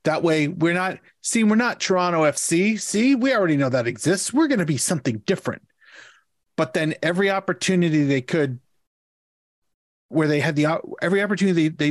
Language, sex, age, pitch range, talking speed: English, male, 30-49, 135-180 Hz, 170 wpm